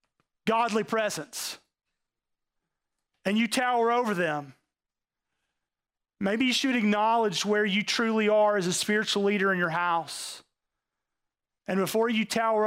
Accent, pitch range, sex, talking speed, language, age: American, 185-250 Hz, male, 125 wpm, English, 30-49